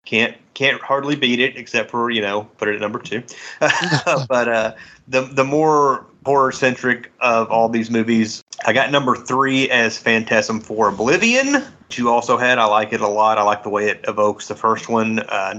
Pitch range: 105-125 Hz